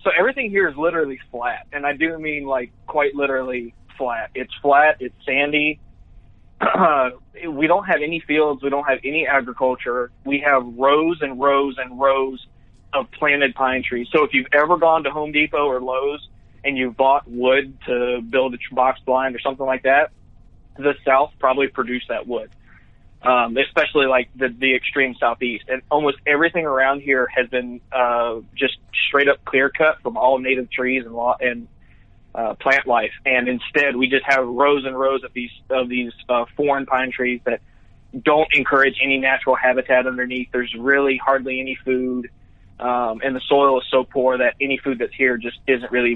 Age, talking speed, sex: 20-39, 185 wpm, male